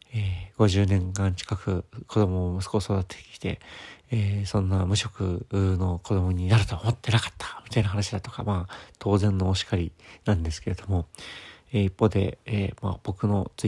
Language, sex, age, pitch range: Japanese, male, 40-59, 95-110 Hz